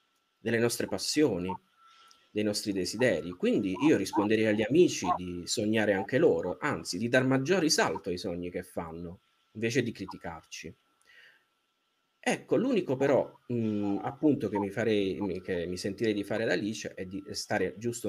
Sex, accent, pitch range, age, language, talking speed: male, native, 90-115 Hz, 30-49, Italian, 155 wpm